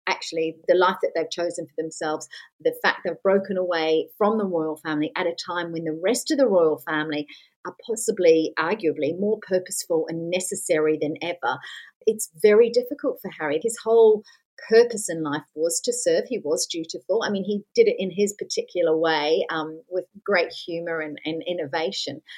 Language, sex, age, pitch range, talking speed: English, female, 40-59, 160-215 Hz, 180 wpm